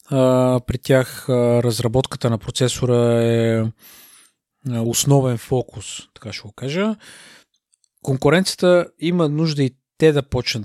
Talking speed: 105 wpm